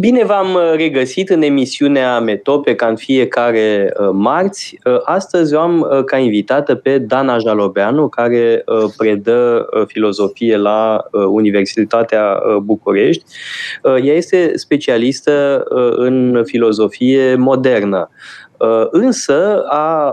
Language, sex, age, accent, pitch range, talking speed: Romanian, male, 20-39, native, 115-150 Hz, 95 wpm